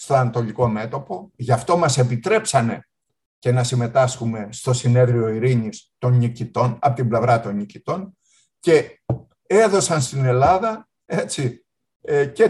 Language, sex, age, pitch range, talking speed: Greek, male, 60-79, 125-190 Hz, 125 wpm